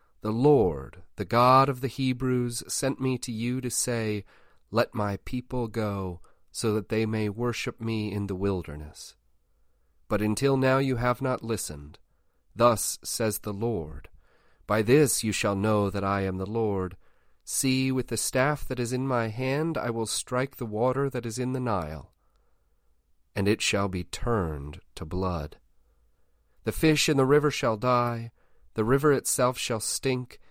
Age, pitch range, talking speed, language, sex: 40-59, 90-125 Hz, 165 wpm, English, male